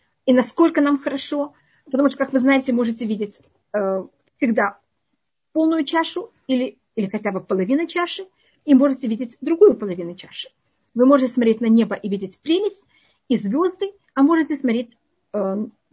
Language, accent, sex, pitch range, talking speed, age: Russian, native, female, 215-285 Hz, 150 wpm, 40-59